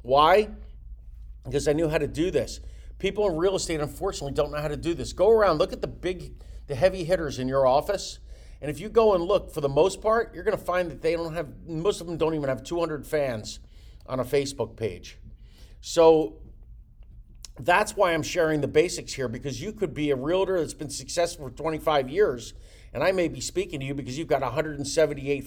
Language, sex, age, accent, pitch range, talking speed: English, male, 50-69, American, 130-180 Hz, 215 wpm